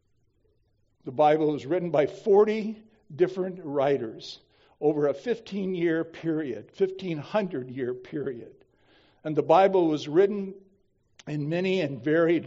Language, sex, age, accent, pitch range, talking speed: English, male, 60-79, American, 150-195 Hz, 125 wpm